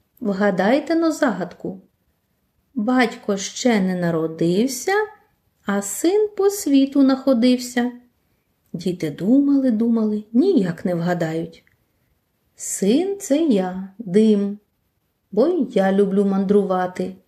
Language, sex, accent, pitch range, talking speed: Ukrainian, female, native, 175-255 Hz, 90 wpm